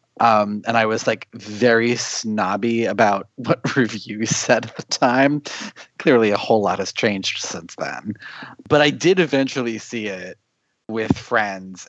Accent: American